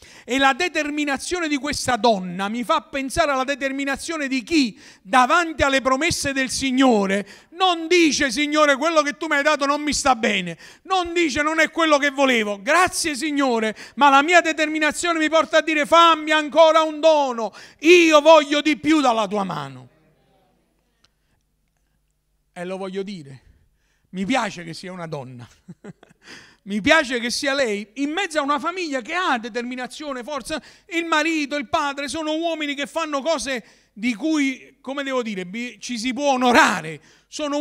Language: Italian